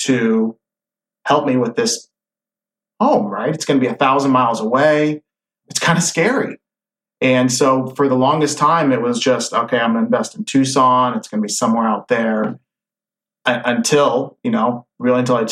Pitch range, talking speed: 130-195 Hz, 185 wpm